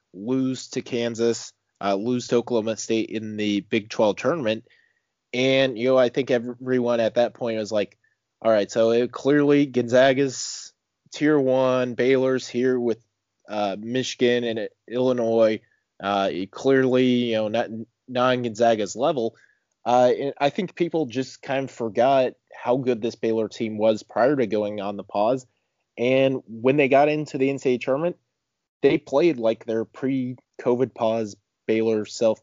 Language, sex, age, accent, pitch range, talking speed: English, male, 20-39, American, 110-130 Hz, 155 wpm